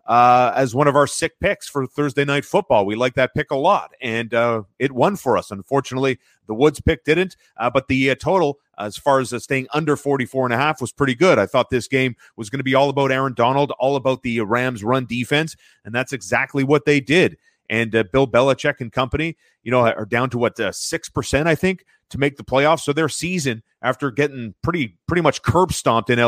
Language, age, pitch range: English, 30-49, 115-140 Hz